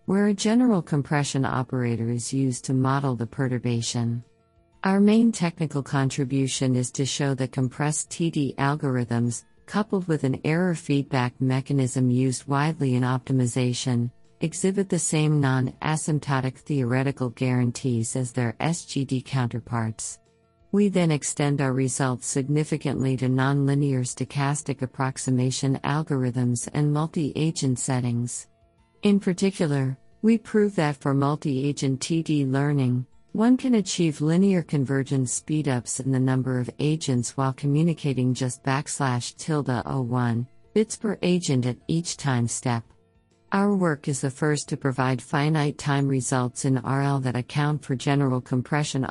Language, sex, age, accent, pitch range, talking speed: English, female, 50-69, American, 125-150 Hz, 125 wpm